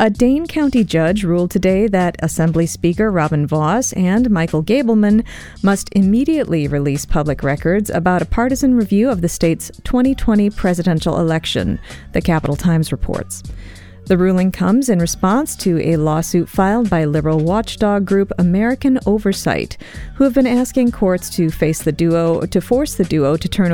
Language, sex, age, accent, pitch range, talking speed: English, female, 40-59, American, 155-215 Hz, 160 wpm